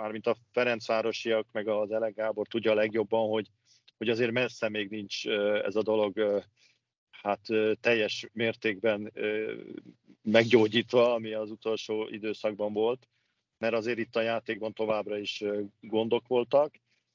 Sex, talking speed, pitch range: male, 130 wpm, 110-120 Hz